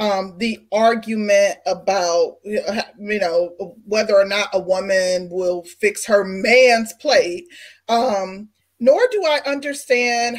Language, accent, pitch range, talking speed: English, American, 210-265 Hz, 120 wpm